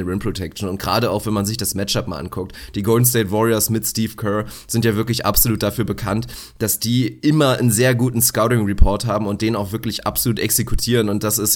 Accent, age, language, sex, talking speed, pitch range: German, 30-49, German, male, 220 wpm, 110-130 Hz